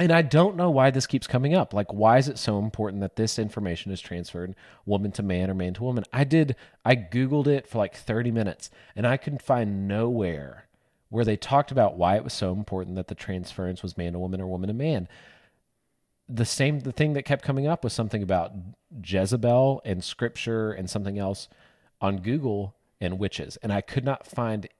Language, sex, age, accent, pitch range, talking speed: English, male, 30-49, American, 95-125 Hz, 210 wpm